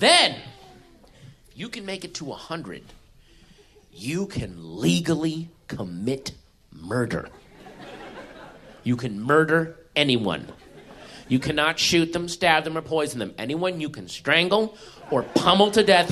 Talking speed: 125 wpm